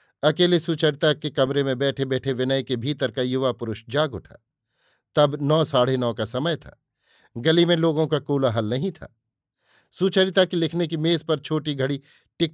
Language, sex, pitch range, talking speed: Hindi, male, 130-160 Hz, 180 wpm